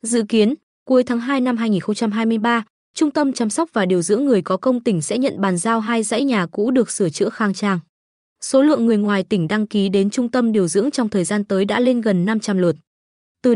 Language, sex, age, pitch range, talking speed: Vietnamese, female, 20-39, 195-255 Hz, 235 wpm